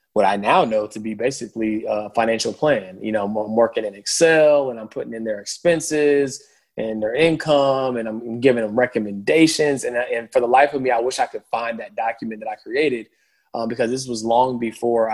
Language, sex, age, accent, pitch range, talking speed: English, male, 20-39, American, 105-120 Hz, 210 wpm